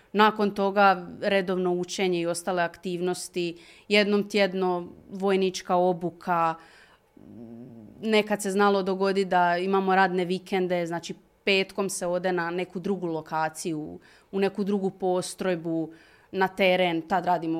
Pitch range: 170-195 Hz